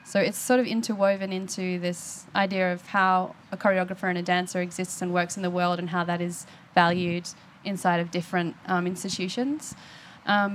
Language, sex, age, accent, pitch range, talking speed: English, female, 20-39, Australian, 175-195 Hz, 180 wpm